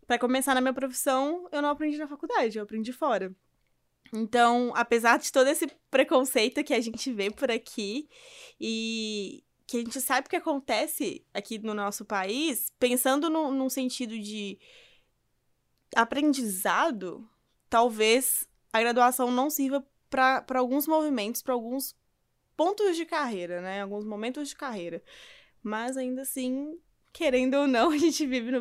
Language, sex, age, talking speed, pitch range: Portuguese, female, 20-39, 145 wpm, 210-280 Hz